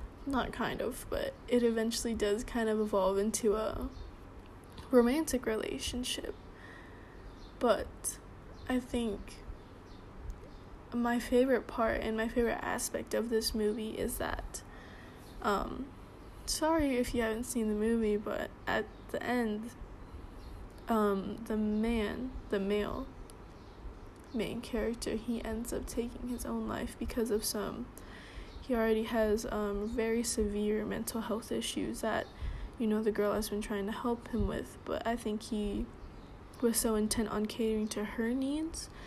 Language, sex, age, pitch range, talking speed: English, female, 10-29, 205-230 Hz, 140 wpm